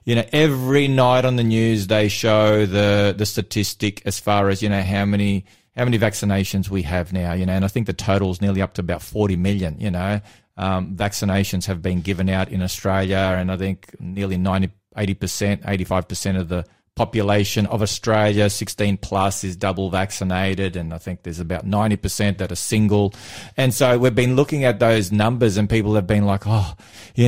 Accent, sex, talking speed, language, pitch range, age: Australian, male, 200 wpm, English, 100-130 Hz, 30-49